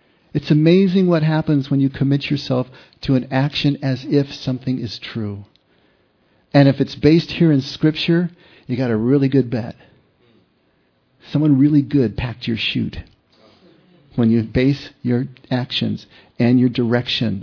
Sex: male